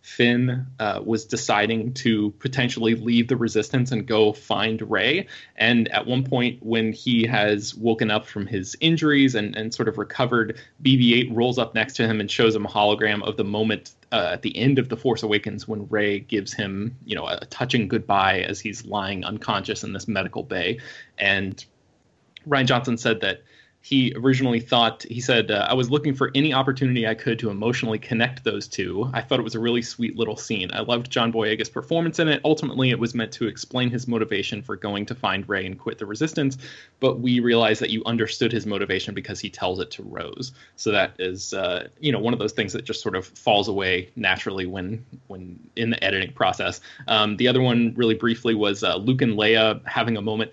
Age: 20-39